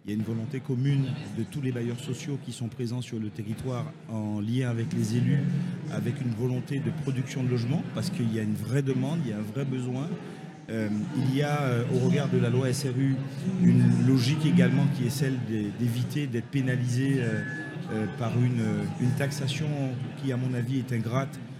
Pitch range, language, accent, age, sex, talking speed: 125-145 Hz, French, French, 40-59, male, 205 wpm